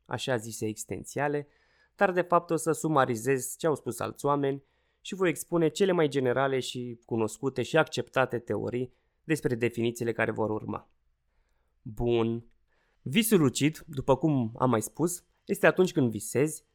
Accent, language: native, Romanian